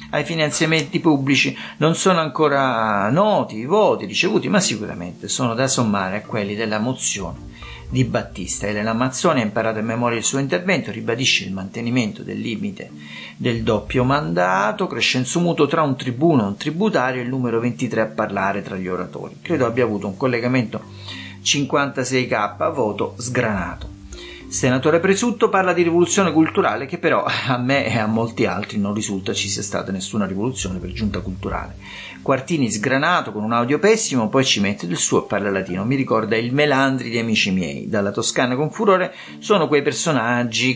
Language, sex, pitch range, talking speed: Italian, male, 100-140 Hz, 170 wpm